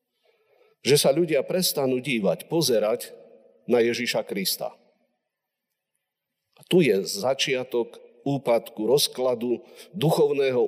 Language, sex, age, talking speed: Slovak, male, 50-69, 90 wpm